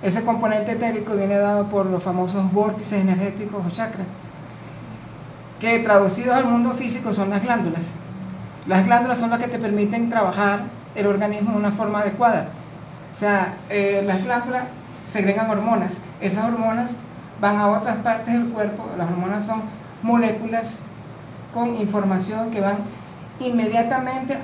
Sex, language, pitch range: male, Spanish, 200-235 Hz